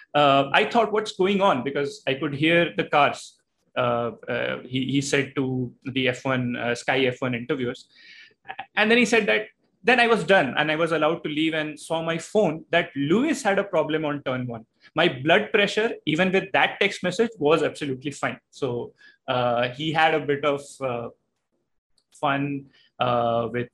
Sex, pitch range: male, 130-170 Hz